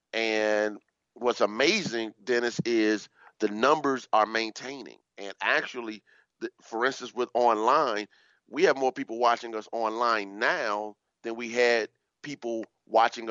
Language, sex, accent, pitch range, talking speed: English, male, American, 105-125 Hz, 130 wpm